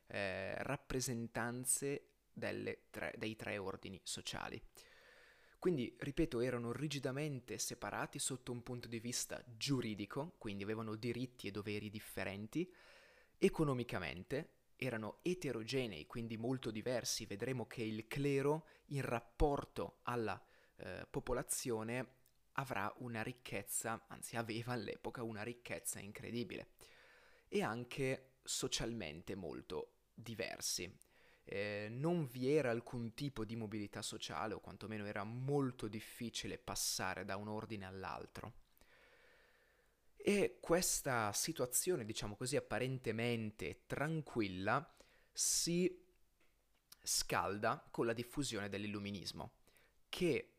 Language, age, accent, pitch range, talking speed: Italian, 20-39, native, 110-135 Hz, 105 wpm